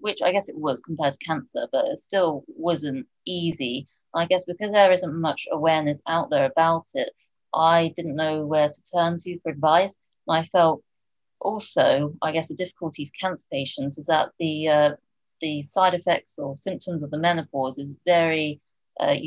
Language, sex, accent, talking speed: English, female, British, 180 wpm